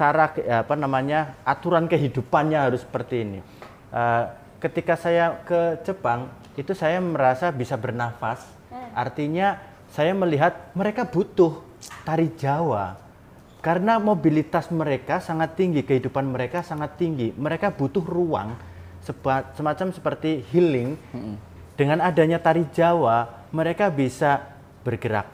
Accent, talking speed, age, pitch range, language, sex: native, 110 wpm, 30-49, 125-170 Hz, Indonesian, male